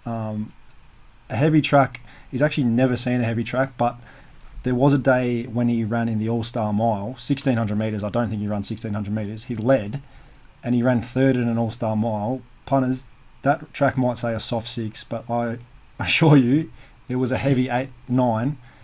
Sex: male